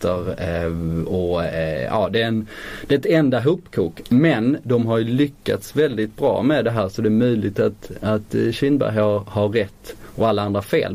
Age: 20-39